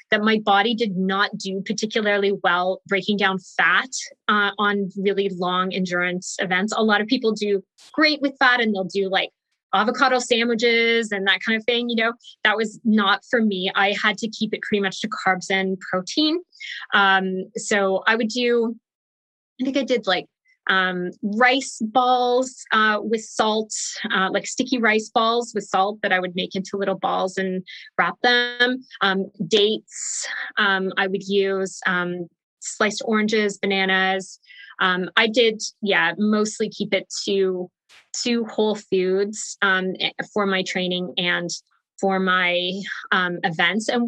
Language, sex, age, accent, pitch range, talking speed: English, female, 20-39, American, 190-230 Hz, 160 wpm